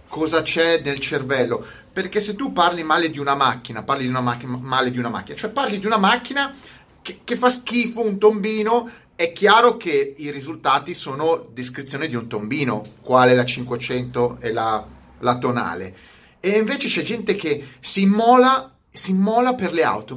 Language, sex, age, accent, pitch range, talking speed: Italian, male, 30-49, native, 135-215 Hz, 180 wpm